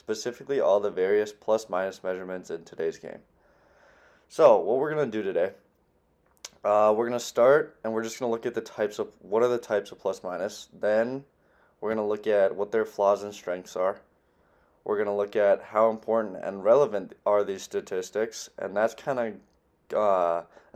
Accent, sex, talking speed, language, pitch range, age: American, male, 180 wpm, English, 95-115 Hz, 20-39